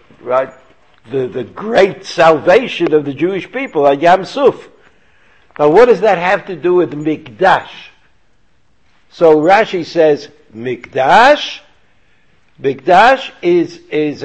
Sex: male